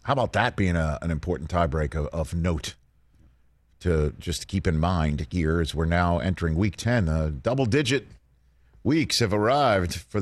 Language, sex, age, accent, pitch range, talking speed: English, male, 50-69, American, 80-105 Hz, 165 wpm